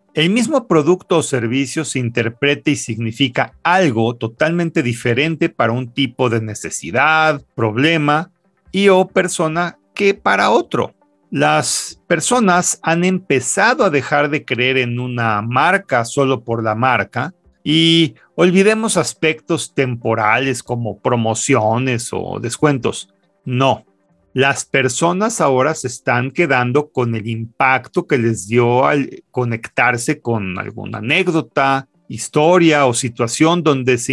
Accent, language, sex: Mexican, Spanish, male